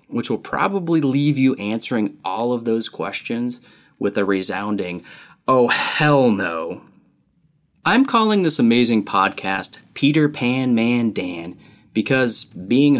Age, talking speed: 20-39, 125 wpm